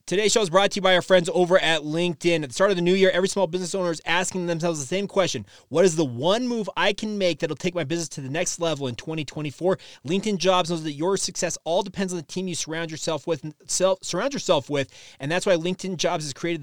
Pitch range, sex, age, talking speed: 155-185 Hz, male, 30-49, 270 wpm